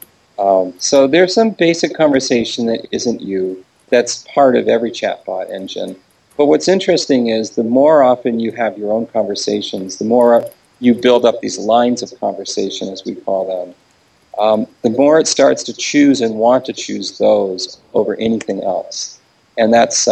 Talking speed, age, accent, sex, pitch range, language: 170 wpm, 40-59, American, male, 100-135 Hz, English